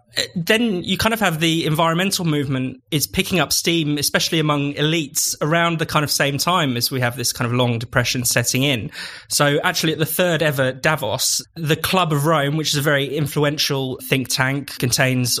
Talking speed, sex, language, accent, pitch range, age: 195 wpm, male, English, British, 130-155 Hz, 20-39